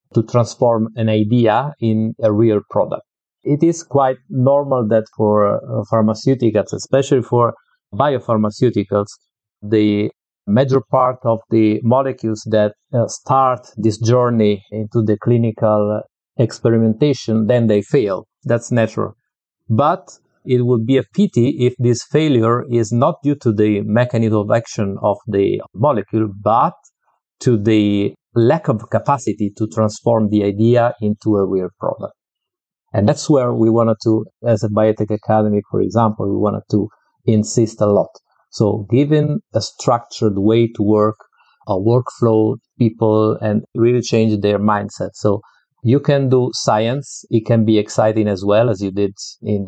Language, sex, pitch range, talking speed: English, male, 105-120 Hz, 145 wpm